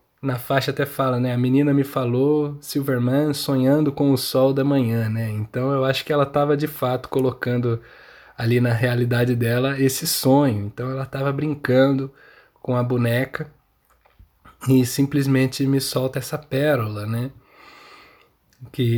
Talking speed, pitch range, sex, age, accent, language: 150 wpm, 120-140 Hz, male, 20-39, Brazilian, Portuguese